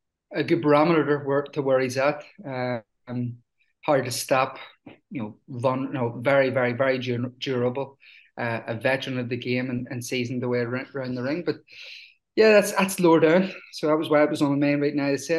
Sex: male